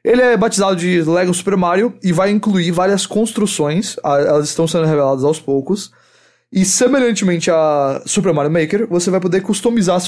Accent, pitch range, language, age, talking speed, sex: Brazilian, 150-185 Hz, English, 20-39, 175 wpm, male